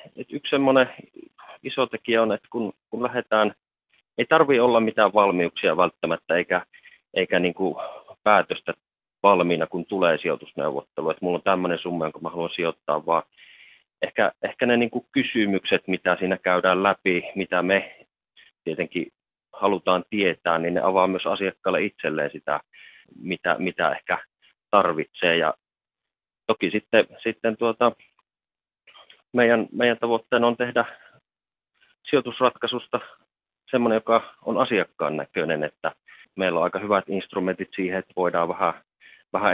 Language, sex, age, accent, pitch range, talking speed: Finnish, male, 30-49, native, 90-115 Hz, 130 wpm